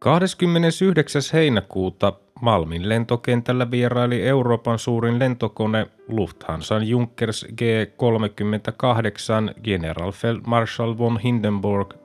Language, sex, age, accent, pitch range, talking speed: Finnish, male, 30-49, native, 100-120 Hz, 70 wpm